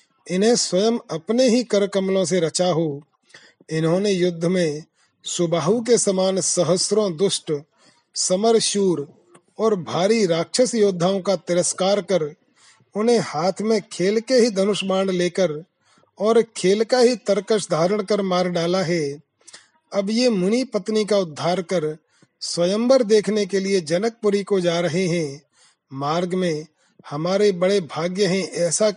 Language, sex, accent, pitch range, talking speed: Hindi, male, native, 175-215 Hz, 120 wpm